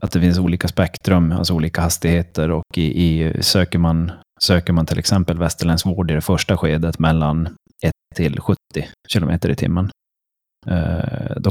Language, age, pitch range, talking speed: Swedish, 30-49, 85-95 Hz, 160 wpm